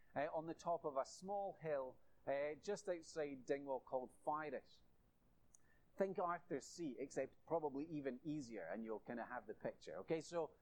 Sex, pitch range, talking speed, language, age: male, 145-190 Hz, 170 wpm, English, 30-49